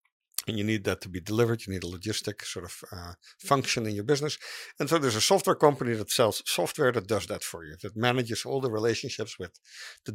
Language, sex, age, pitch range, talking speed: English, male, 50-69, 110-145 Hz, 230 wpm